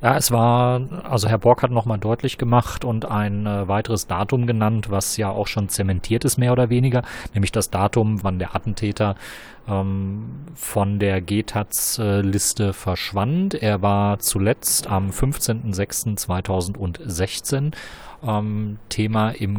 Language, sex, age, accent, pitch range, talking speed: German, male, 30-49, German, 95-115 Hz, 140 wpm